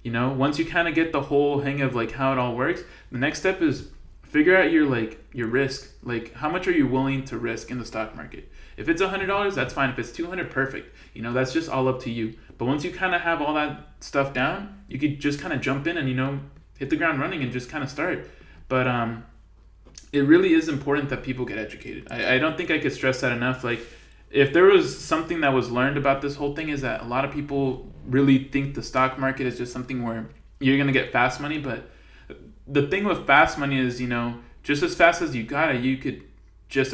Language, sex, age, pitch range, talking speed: English, male, 20-39, 125-150 Hz, 250 wpm